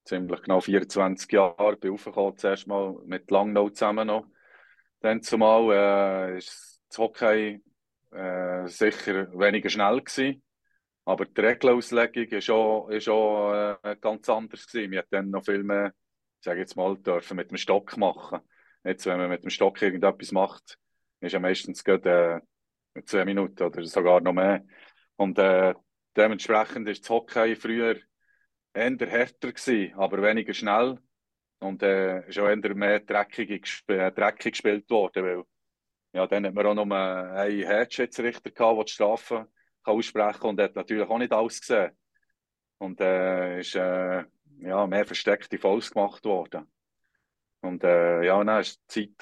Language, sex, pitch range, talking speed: German, male, 95-110 Hz, 155 wpm